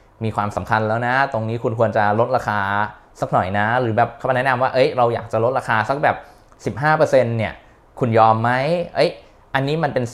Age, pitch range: 20-39, 110-140 Hz